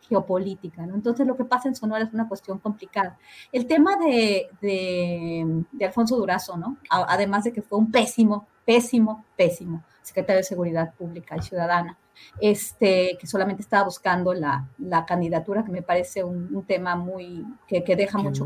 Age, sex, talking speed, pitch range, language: 30-49, female, 175 wpm, 180-225 Hz, Spanish